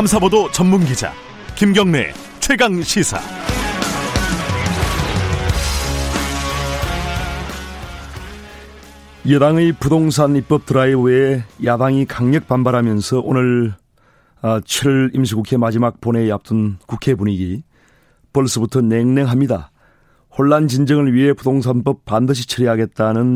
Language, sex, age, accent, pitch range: Korean, male, 40-59, native, 110-135 Hz